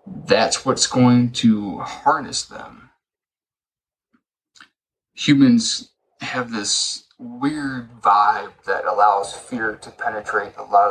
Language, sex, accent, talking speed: English, male, American, 100 wpm